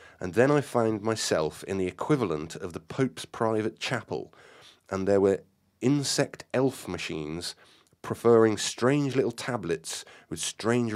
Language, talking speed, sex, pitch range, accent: English, 135 wpm, male, 95-125 Hz, British